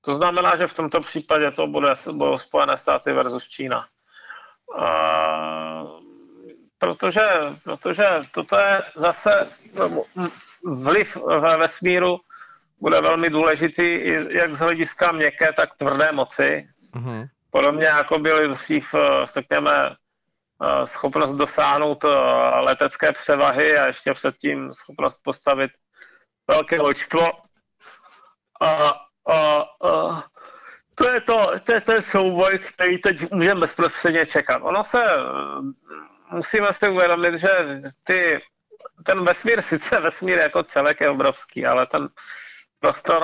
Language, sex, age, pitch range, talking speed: Czech, male, 40-59, 145-180 Hz, 115 wpm